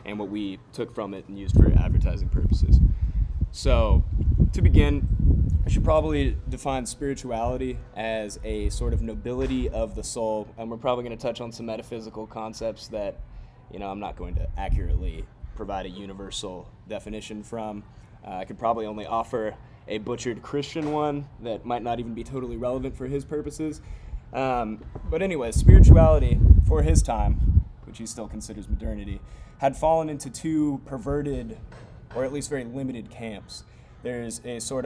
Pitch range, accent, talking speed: 95-125 Hz, American, 165 wpm